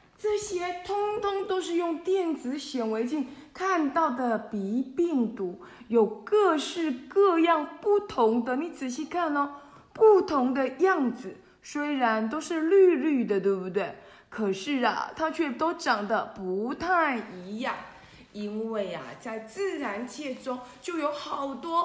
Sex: female